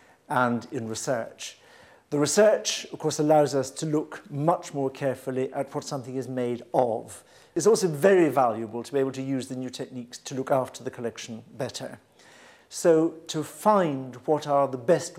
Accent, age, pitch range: British, 50-69, 125-145 Hz